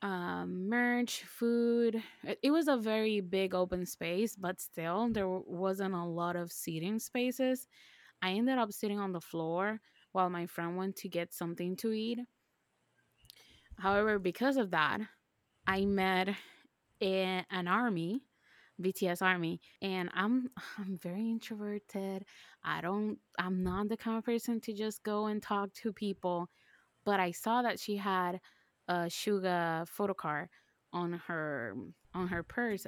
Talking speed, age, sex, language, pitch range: 145 wpm, 20-39, female, English, 180-235 Hz